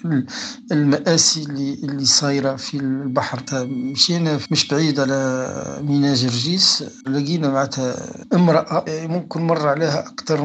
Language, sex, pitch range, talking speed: Arabic, male, 140-175 Hz, 105 wpm